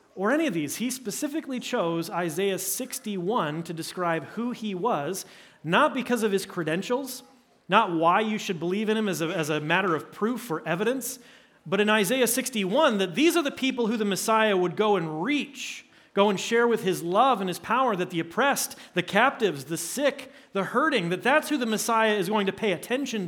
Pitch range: 180-240 Hz